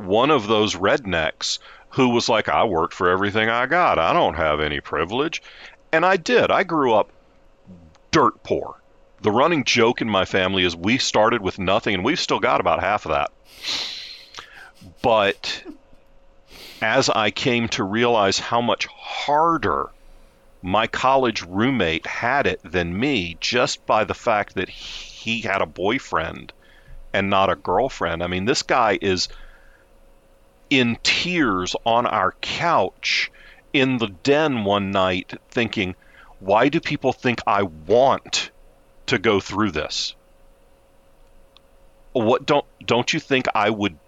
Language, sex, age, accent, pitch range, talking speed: English, male, 40-59, American, 90-115 Hz, 145 wpm